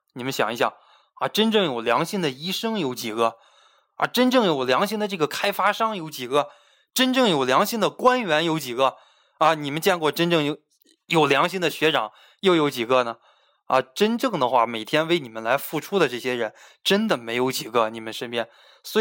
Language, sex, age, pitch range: Chinese, male, 20-39, 125-175 Hz